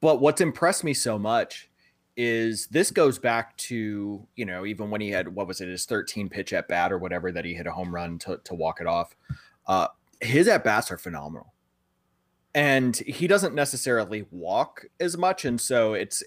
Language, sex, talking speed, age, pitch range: English, male, 200 wpm, 30-49, 95-135 Hz